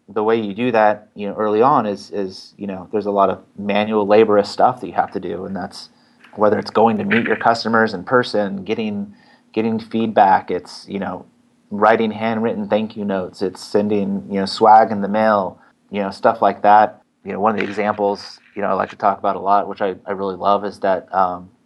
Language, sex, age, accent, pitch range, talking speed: English, male, 30-49, American, 100-110 Hz, 230 wpm